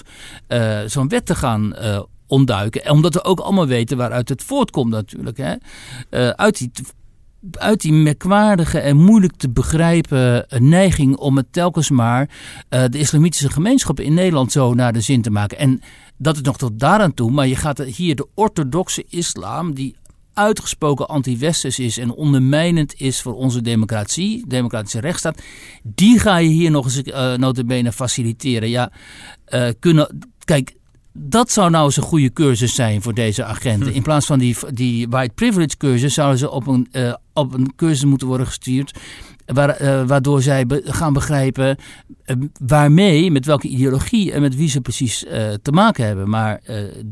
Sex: male